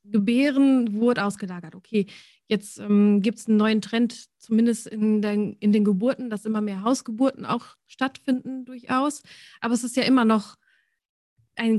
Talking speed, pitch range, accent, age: 160 wpm, 215-245 Hz, German, 20-39